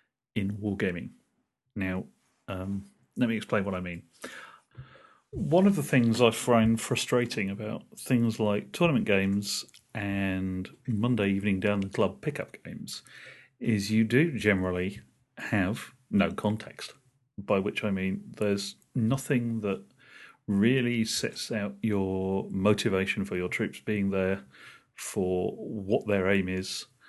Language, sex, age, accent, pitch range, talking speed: English, male, 40-59, British, 95-120 Hz, 130 wpm